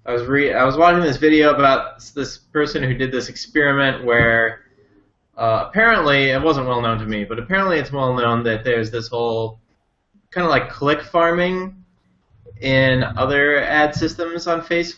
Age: 20-39